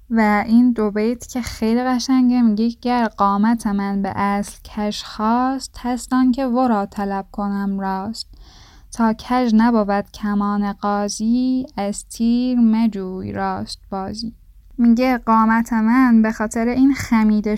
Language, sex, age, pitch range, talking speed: Persian, female, 10-29, 210-245 Hz, 135 wpm